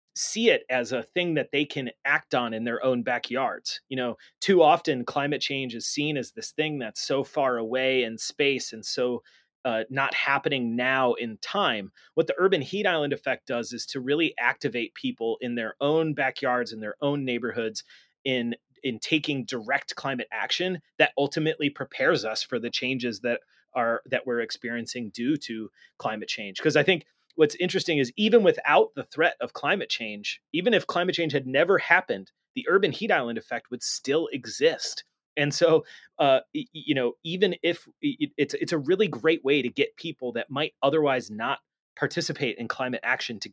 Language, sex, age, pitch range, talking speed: English, male, 30-49, 120-160 Hz, 185 wpm